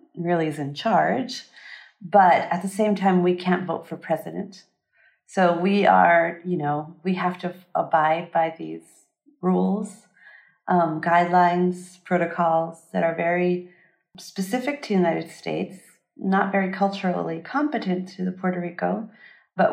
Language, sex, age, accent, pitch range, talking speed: English, female, 40-59, American, 165-195 Hz, 140 wpm